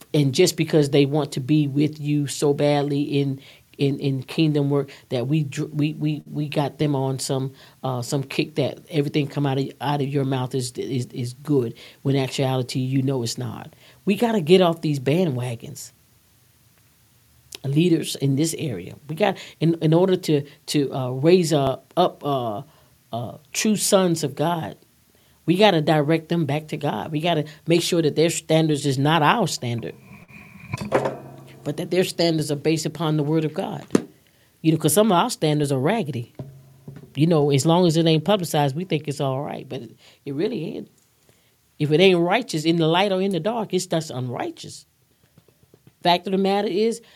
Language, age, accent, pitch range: English, 40-59, American, 135-165 Hz